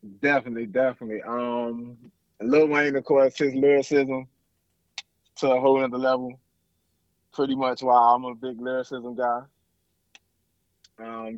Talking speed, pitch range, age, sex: 120 wpm, 105-135 Hz, 20-39, male